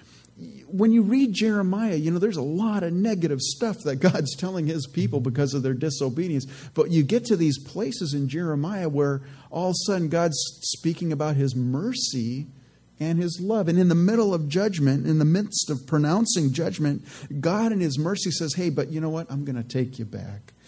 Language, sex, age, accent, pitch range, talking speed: English, male, 40-59, American, 135-175 Hz, 205 wpm